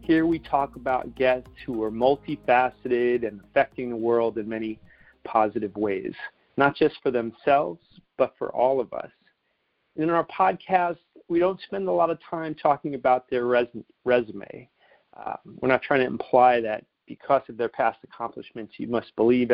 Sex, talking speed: male, 165 wpm